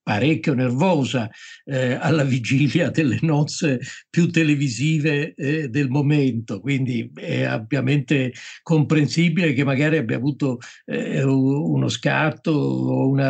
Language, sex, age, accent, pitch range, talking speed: Italian, male, 50-69, native, 120-150 Hz, 115 wpm